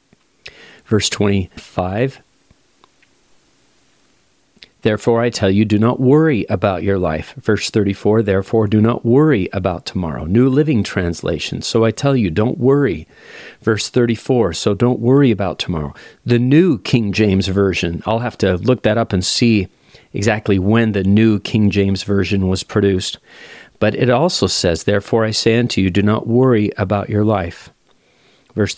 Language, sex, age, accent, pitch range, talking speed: English, male, 40-59, American, 95-115 Hz, 155 wpm